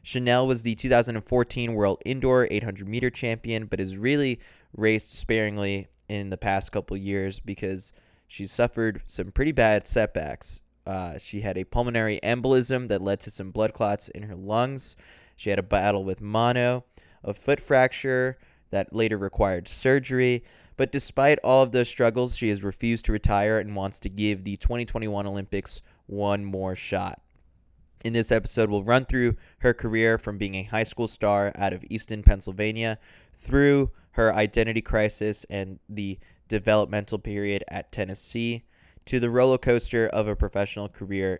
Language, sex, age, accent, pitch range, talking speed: English, male, 20-39, American, 100-115 Hz, 160 wpm